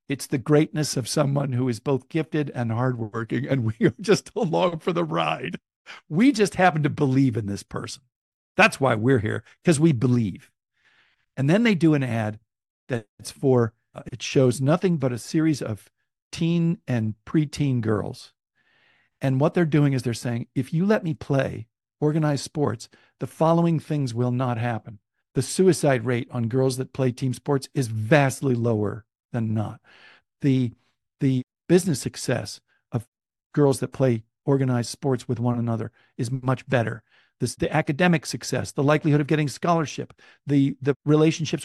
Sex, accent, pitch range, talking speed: male, American, 120-155 Hz, 165 wpm